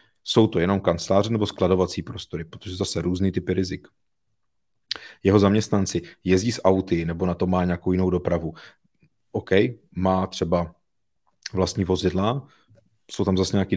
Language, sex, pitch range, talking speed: Czech, male, 85-100 Hz, 145 wpm